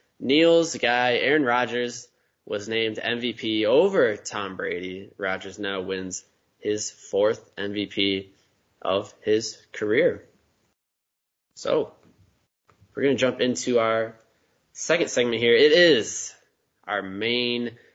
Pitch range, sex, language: 105-125 Hz, male, English